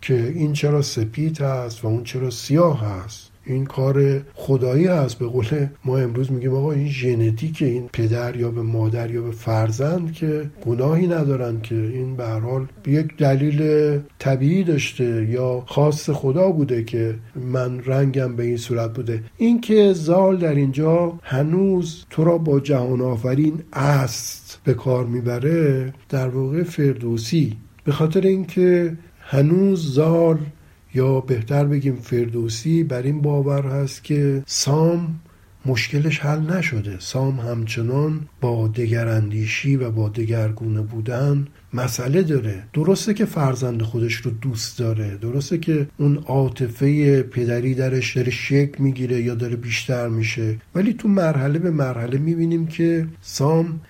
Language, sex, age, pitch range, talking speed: Persian, male, 50-69, 120-150 Hz, 140 wpm